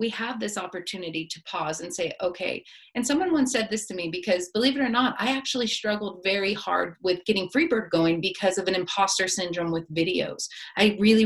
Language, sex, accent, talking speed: English, female, American, 210 wpm